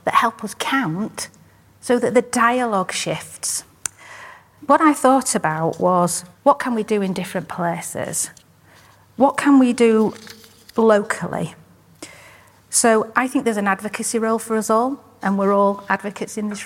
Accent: British